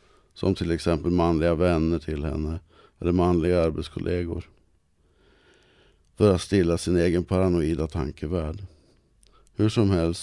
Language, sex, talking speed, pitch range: Swedish, male, 115 wpm, 80-95 Hz